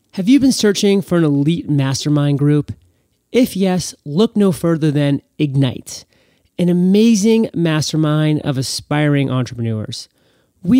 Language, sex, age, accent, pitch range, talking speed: English, male, 30-49, American, 130-180 Hz, 130 wpm